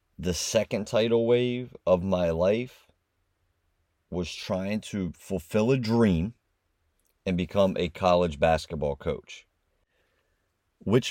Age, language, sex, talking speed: 30-49, English, male, 110 wpm